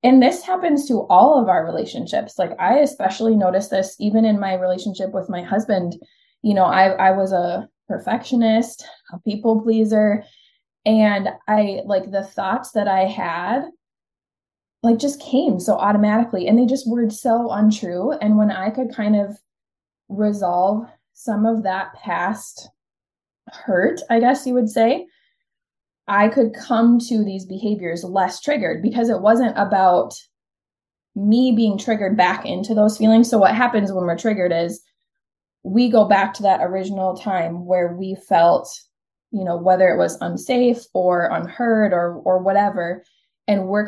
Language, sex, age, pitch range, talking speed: English, female, 20-39, 185-230 Hz, 155 wpm